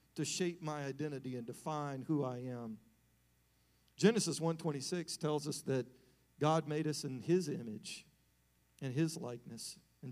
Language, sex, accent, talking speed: English, male, American, 140 wpm